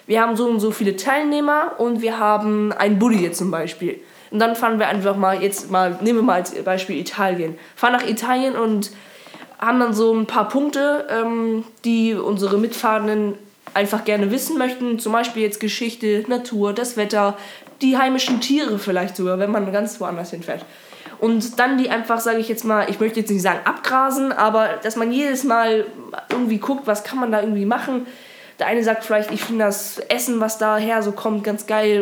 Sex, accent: female, German